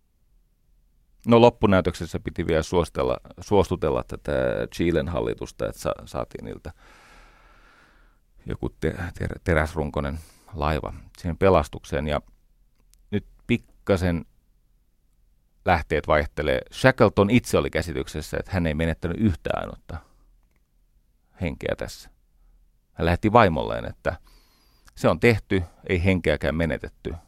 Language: Finnish